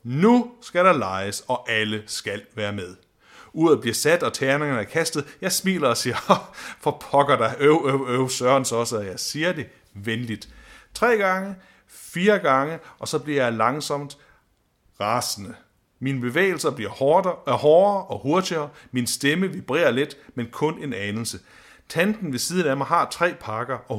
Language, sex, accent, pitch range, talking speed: Danish, male, native, 115-160 Hz, 170 wpm